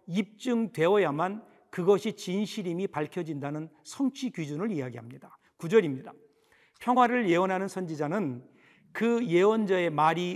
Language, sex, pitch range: Korean, male, 155-220 Hz